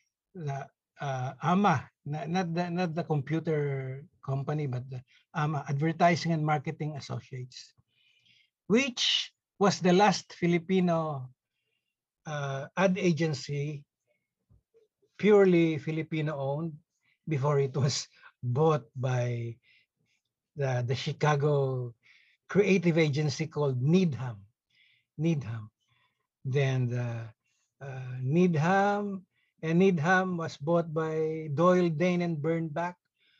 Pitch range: 135-170 Hz